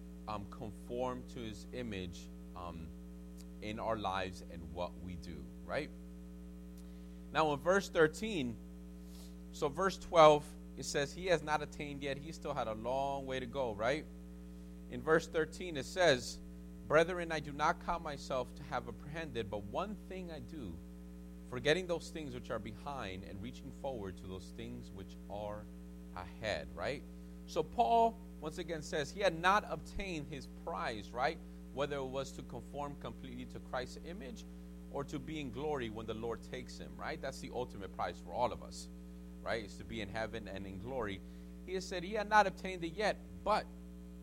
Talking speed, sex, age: 180 wpm, male, 30-49